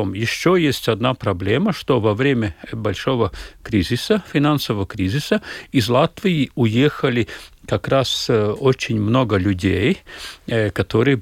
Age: 50-69